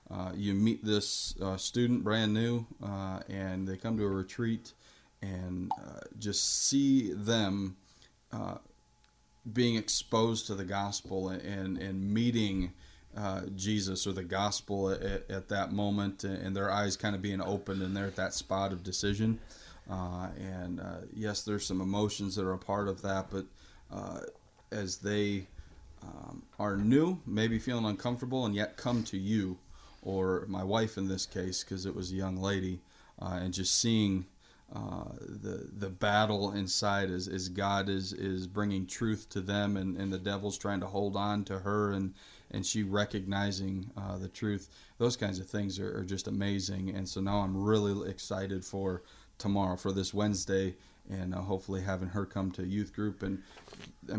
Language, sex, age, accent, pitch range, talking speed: English, male, 30-49, American, 95-105 Hz, 175 wpm